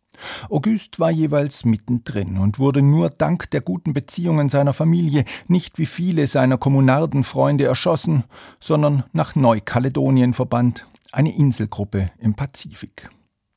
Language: German